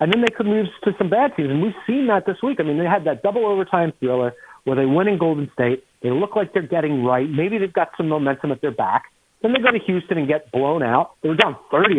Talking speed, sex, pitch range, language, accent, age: 280 wpm, male, 135-190 Hz, English, American, 40-59